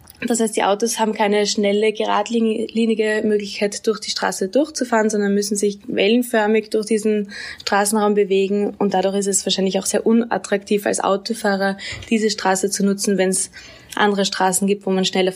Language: German